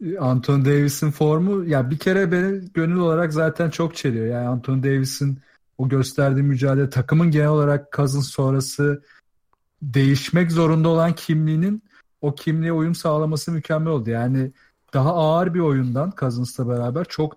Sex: male